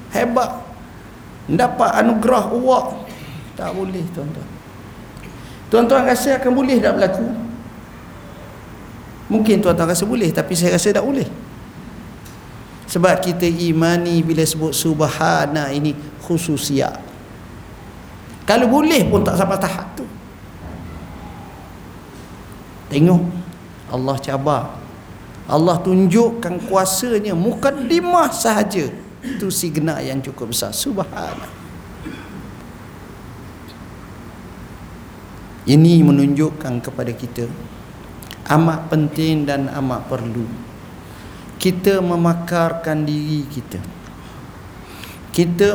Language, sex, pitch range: Malay, male, 130-190 Hz